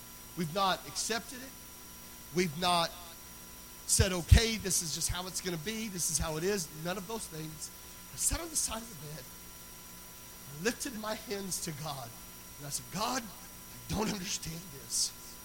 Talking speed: 185 wpm